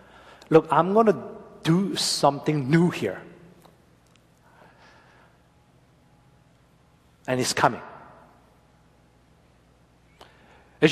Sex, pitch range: male, 135-185 Hz